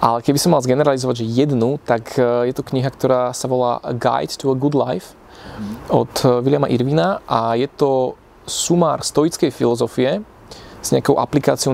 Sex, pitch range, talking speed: male, 120-140 Hz, 165 wpm